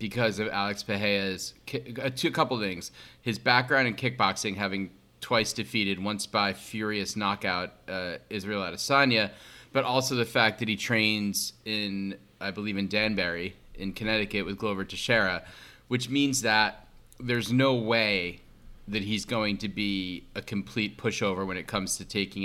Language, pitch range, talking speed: English, 100-120 Hz, 155 wpm